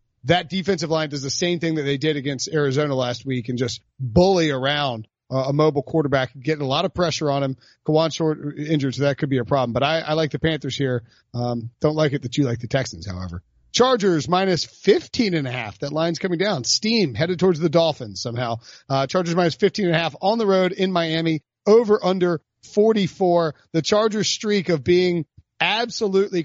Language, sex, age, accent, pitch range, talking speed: English, male, 40-59, American, 135-180 Hz, 210 wpm